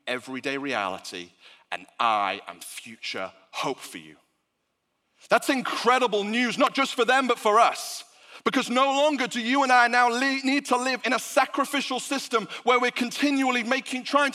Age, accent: 30-49, British